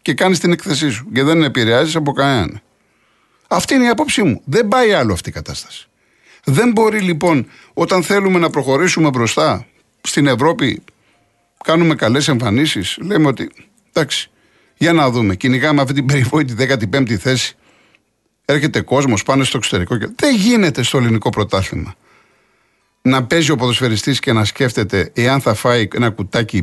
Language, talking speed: Greek, 155 wpm